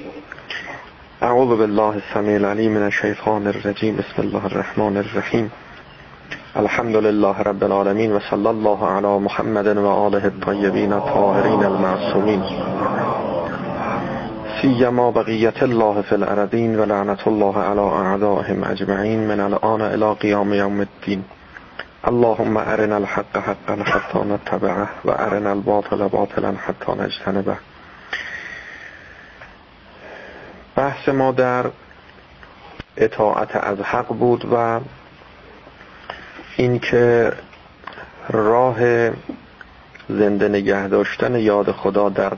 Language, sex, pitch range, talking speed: Persian, male, 100-115 Hz, 95 wpm